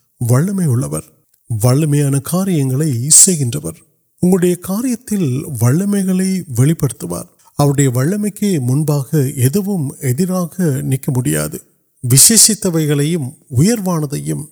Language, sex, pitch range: Urdu, male, 125-165 Hz